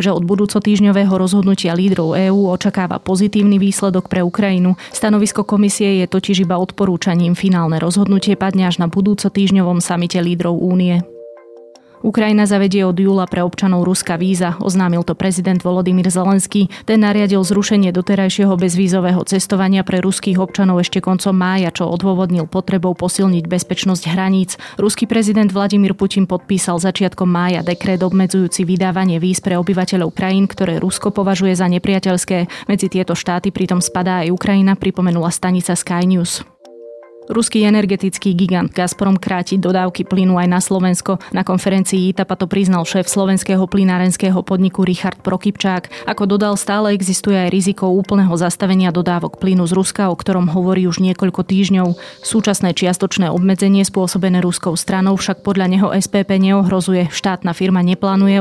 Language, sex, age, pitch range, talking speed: Slovak, female, 20-39, 180-195 Hz, 145 wpm